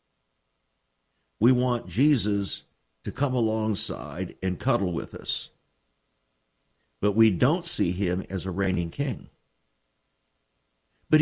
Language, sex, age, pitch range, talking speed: English, male, 50-69, 95-155 Hz, 105 wpm